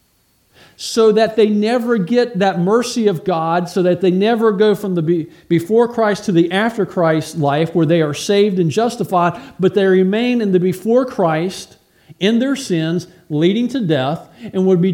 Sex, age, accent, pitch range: male, 50-69, American, 185-240 Hz